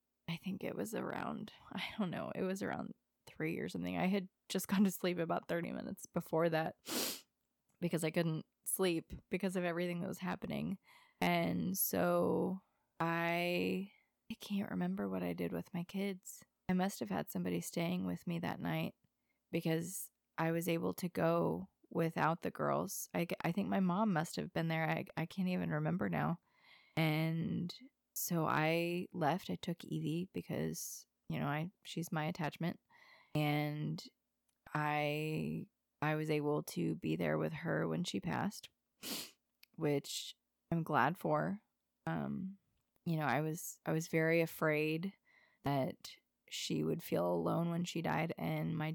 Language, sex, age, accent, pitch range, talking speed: English, female, 20-39, American, 150-185 Hz, 160 wpm